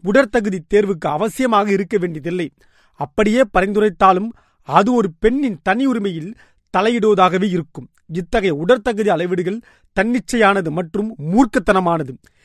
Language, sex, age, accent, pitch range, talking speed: Tamil, male, 30-49, native, 185-235 Hz, 85 wpm